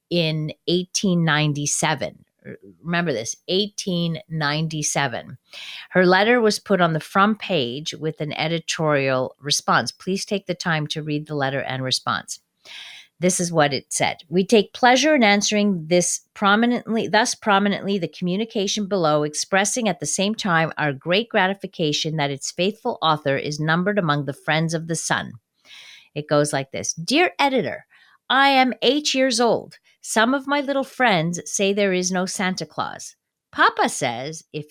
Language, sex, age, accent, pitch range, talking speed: English, female, 40-59, American, 155-215 Hz, 155 wpm